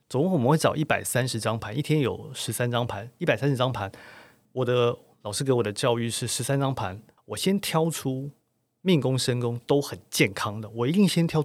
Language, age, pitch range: Chinese, 30-49, 115-150 Hz